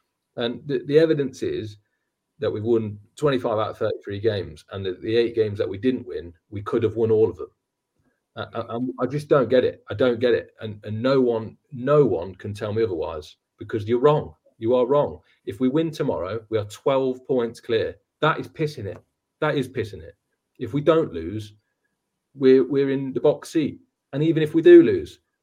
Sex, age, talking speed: male, 40-59, 210 wpm